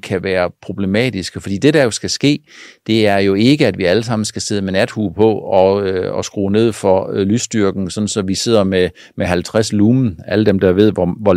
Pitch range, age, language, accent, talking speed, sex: 100-125 Hz, 50-69, Danish, native, 220 wpm, male